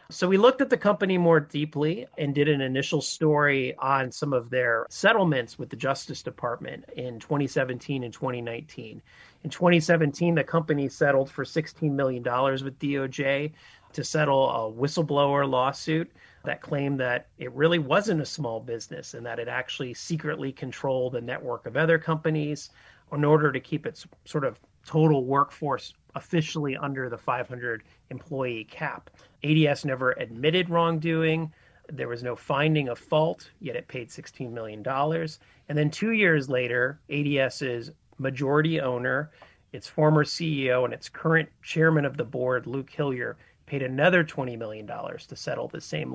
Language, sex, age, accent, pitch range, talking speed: English, male, 30-49, American, 125-155 Hz, 155 wpm